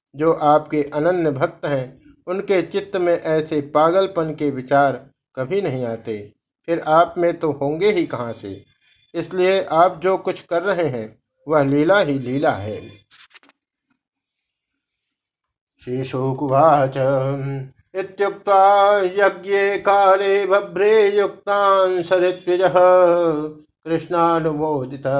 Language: Hindi